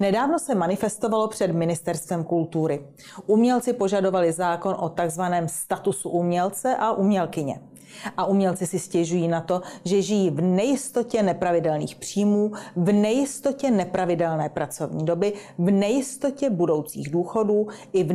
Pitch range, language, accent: 170-215 Hz, Czech, native